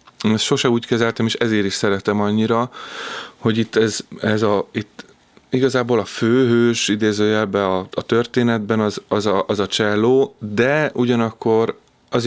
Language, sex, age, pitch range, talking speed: Hungarian, male, 30-49, 100-115 Hz, 150 wpm